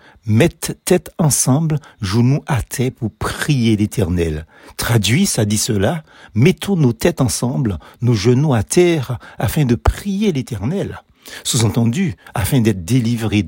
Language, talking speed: French, 140 wpm